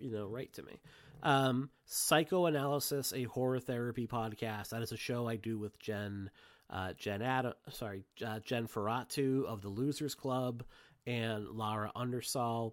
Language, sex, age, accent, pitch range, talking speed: English, male, 30-49, American, 110-135 Hz, 155 wpm